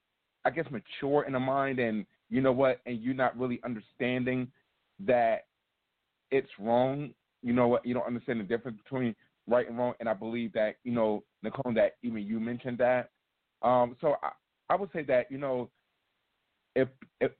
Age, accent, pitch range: 30-49, American, 110-135 Hz